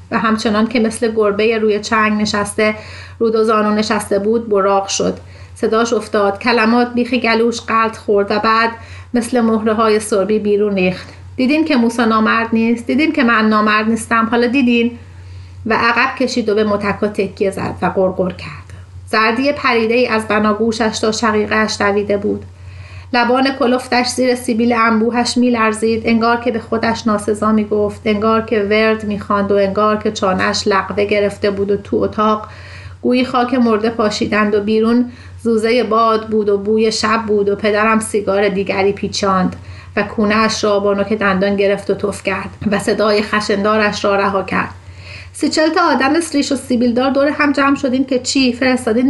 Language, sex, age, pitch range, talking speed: Persian, female, 30-49, 200-235 Hz, 165 wpm